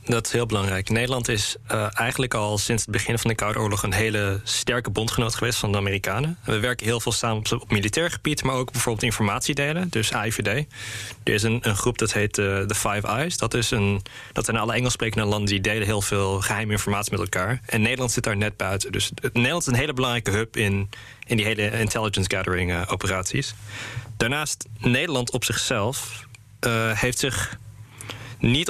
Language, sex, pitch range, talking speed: Dutch, male, 105-120 Hz, 200 wpm